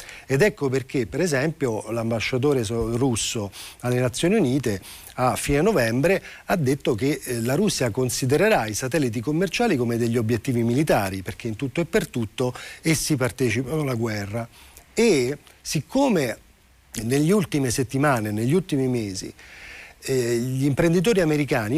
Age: 40-59